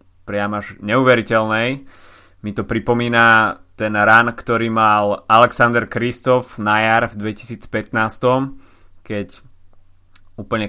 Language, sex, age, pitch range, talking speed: Slovak, male, 20-39, 100-120 Hz, 95 wpm